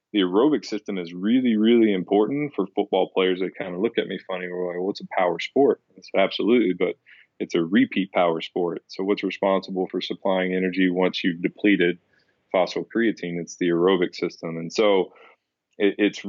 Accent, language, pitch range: American, English, 90-100 Hz